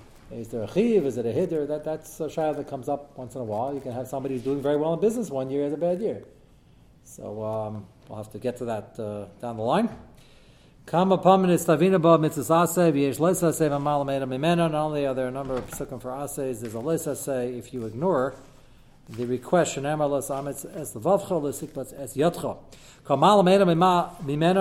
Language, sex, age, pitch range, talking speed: English, male, 40-59, 130-170 Hz, 205 wpm